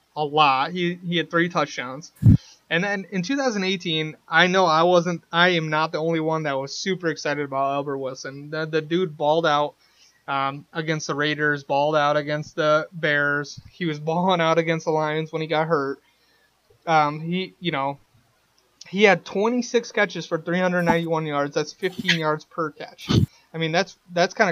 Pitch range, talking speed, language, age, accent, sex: 150-175 Hz, 185 wpm, English, 20-39, American, male